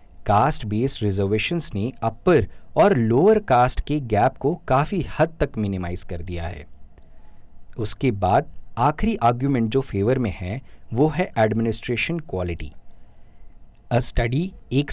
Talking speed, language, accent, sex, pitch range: 135 wpm, Hindi, native, male, 100-140 Hz